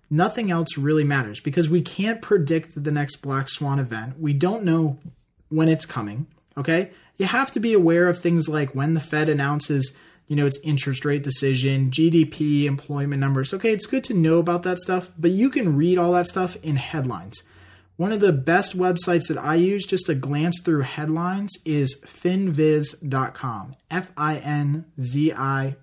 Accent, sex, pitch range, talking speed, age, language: American, male, 135-170 Hz, 170 wpm, 20-39, English